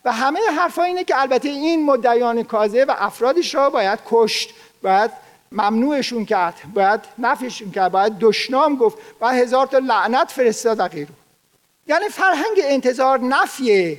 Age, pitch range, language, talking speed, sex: 50-69, 225-295 Hz, Persian, 145 wpm, male